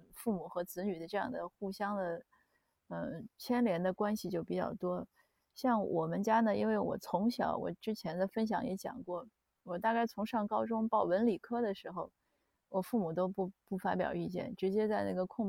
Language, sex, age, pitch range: Chinese, female, 30-49, 180-220 Hz